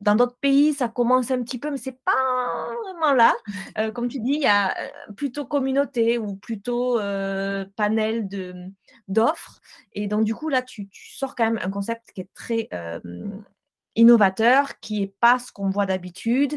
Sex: female